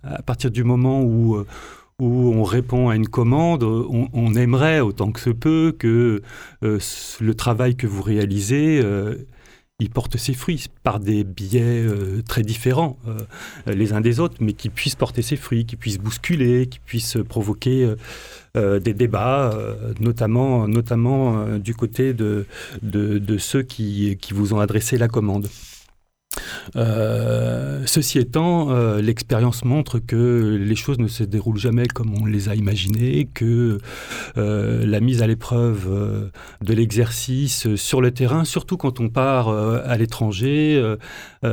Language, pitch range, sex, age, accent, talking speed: French, 105-125 Hz, male, 40-59, French, 160 wpm